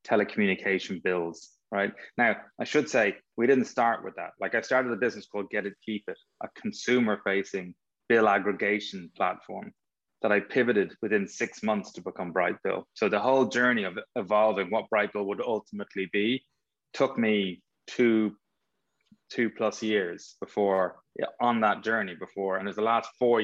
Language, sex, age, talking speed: English, male, 20-39, 170 wpm